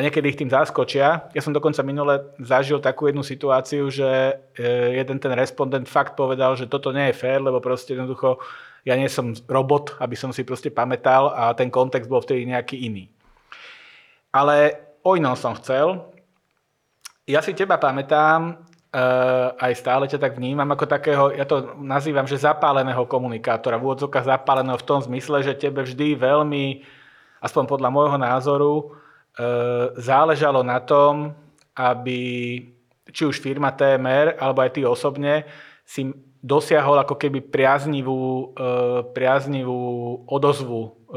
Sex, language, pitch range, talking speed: male, Slovak, 125-145 Hz, 140 wpm